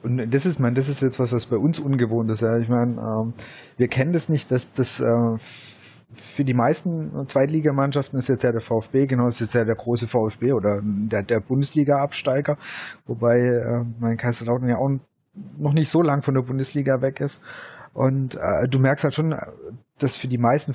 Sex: male